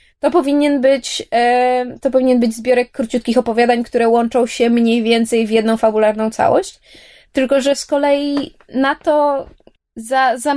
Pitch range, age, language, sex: 230-280 Hz, 20-39, Polish, female